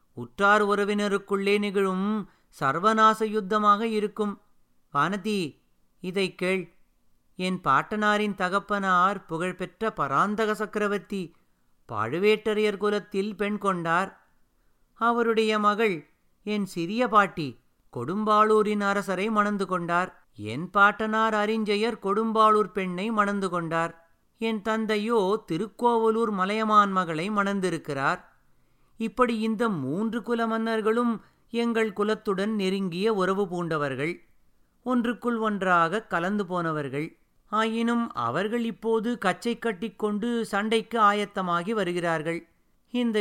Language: Tamil